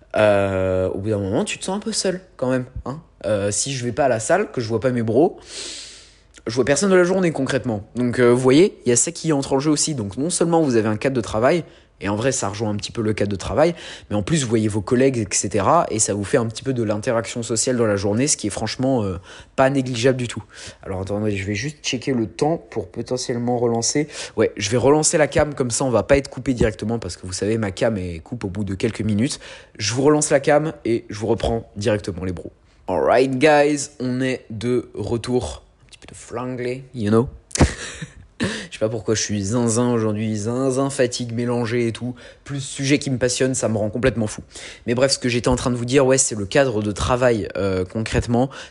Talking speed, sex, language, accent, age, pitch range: 250 wpm, male, French, French, 20-39, 105-130 Hz